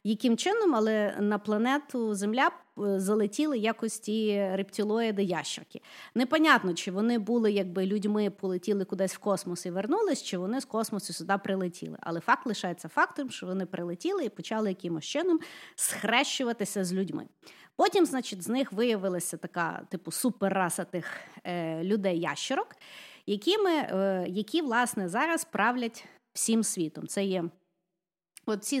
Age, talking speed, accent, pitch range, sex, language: 30-49, 135 wpm, native, 180-250 Hz, female, Ukrainian